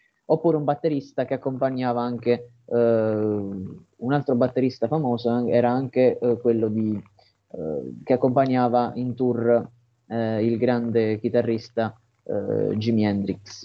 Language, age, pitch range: Italian, 20-39, 120-145 Hz